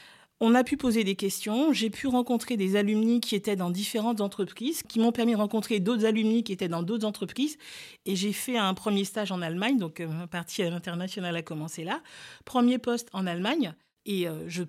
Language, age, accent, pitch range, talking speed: French, 40-59, French, 190-240 Hz, 200 wpm